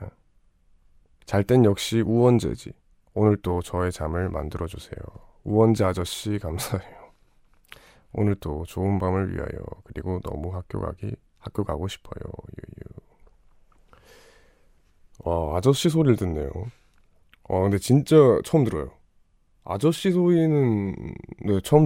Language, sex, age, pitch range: Korean, male, 20-39, 85-110 Hz